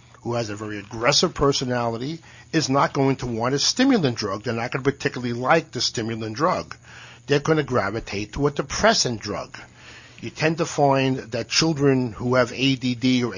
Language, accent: English, American